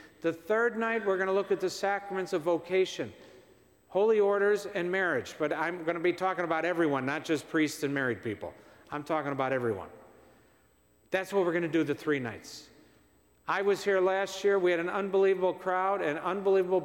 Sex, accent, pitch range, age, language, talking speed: male, American, 155-200 Hz, 50-69, English, 195 wpm